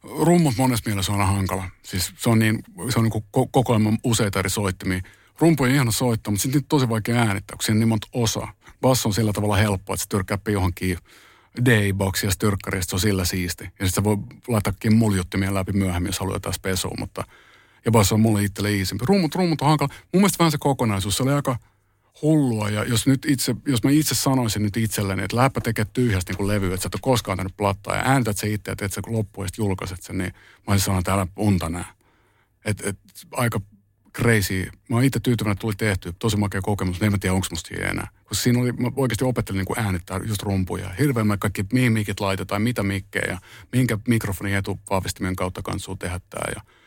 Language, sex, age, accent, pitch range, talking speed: Finnish, male, 50-69, native, 95-120 Hz, 205 wpm